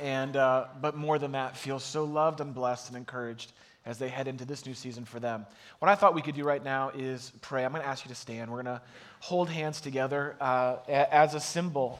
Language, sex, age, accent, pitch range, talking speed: English, male, 30-49, American, 130-155 Hz, 240 wpm